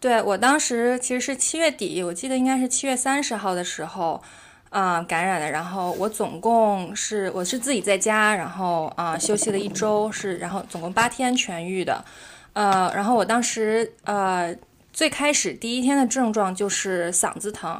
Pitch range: 180-225 Hz